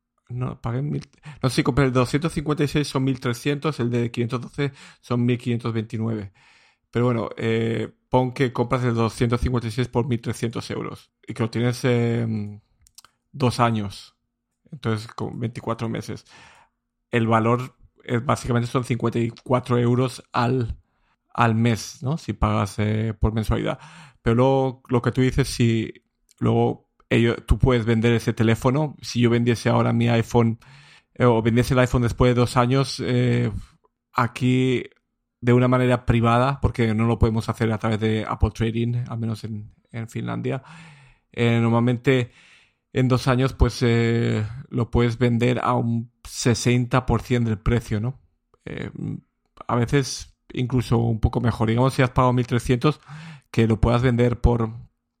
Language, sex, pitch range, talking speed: Spanish, male, 115-125 Hz, 140 wpm